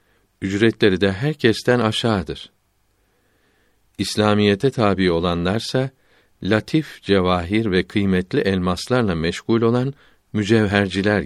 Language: Turkish